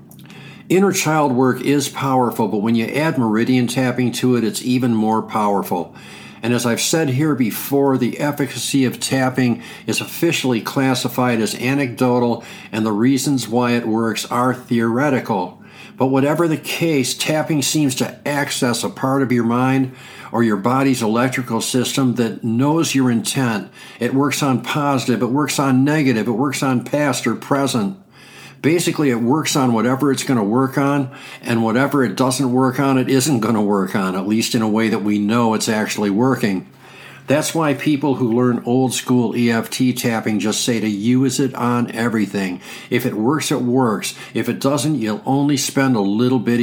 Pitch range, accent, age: 120-140 Hz, American, 60-79